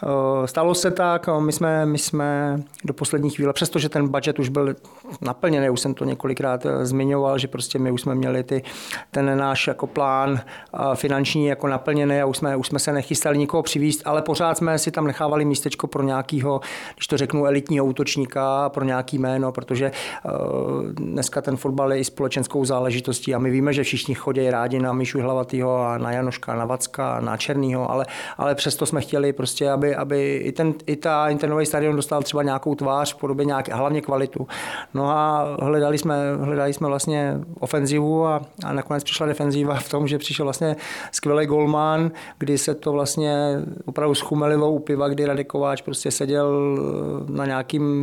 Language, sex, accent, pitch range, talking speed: Czech, male, native, 135-150 Hz, 175 wpm